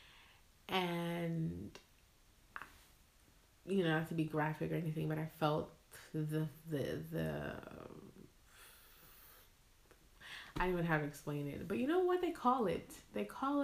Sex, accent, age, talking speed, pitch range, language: female, American, 20-39, 135 wpm, 155-195 Hz, English